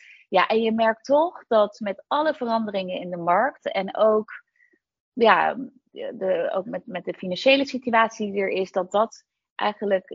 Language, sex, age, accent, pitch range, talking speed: Dutch, female, 30-49, Dutch, 185-230 Hz, 155 wpm